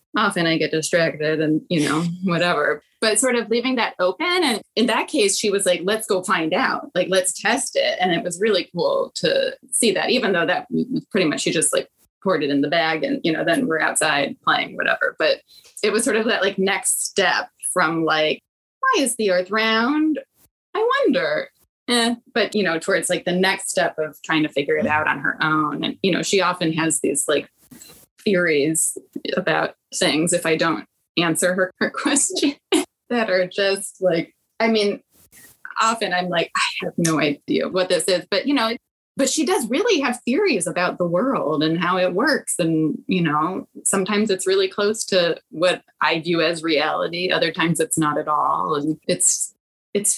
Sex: female